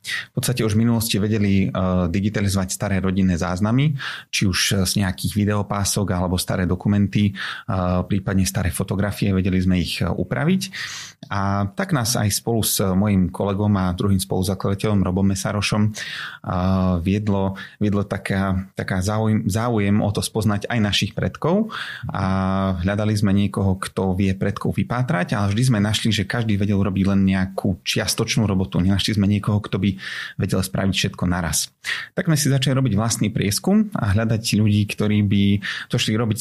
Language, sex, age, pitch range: Slovak, male, 30-49, 95-110 Hz